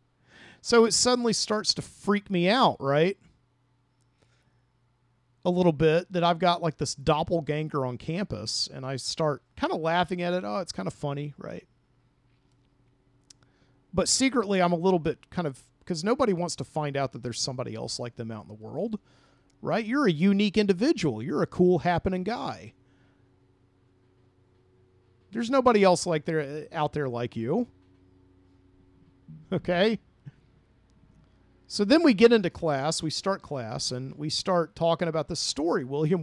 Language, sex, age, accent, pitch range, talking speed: English, male, 40-59, American, 125-180 Hz, 155 wpm